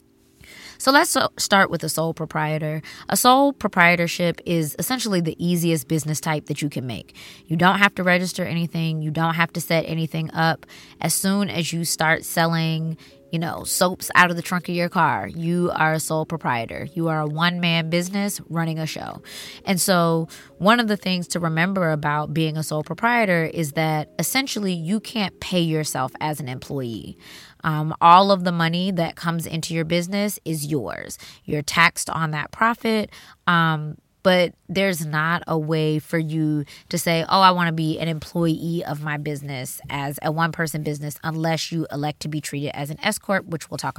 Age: 20-39